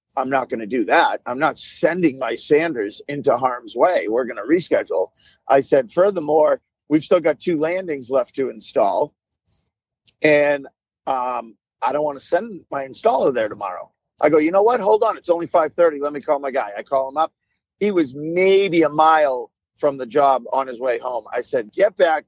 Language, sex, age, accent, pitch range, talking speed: English, male, 50-69, American, 135-175 Hz, 200 wpm